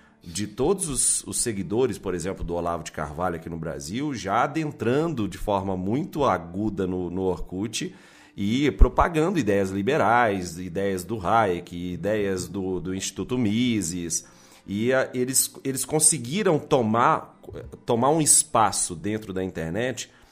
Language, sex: Portuguese, male